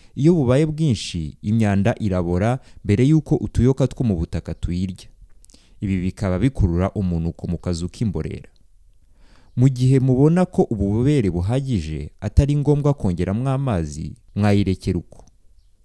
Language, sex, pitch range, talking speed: English, male, 90-130 Hz, 115 wpm